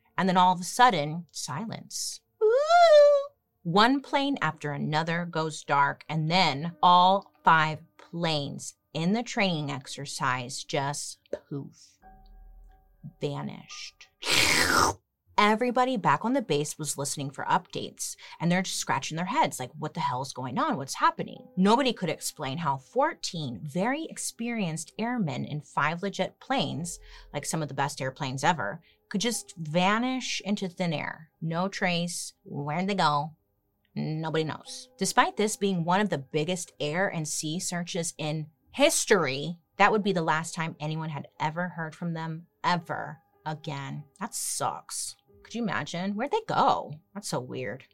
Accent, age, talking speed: American, 30-49, 150 wpm